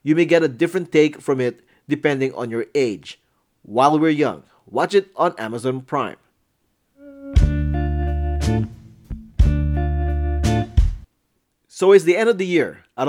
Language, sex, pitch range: English, male, 130-185 Hz